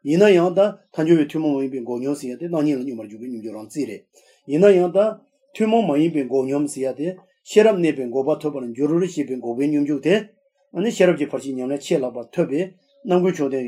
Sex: male